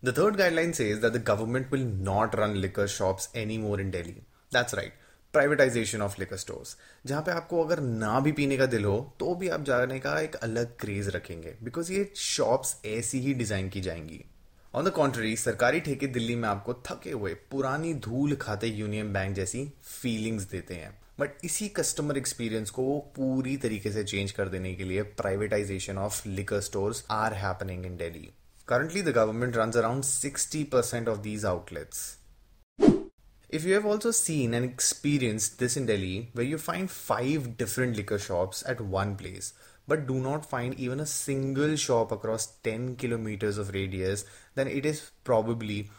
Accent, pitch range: native, 105-135 Hz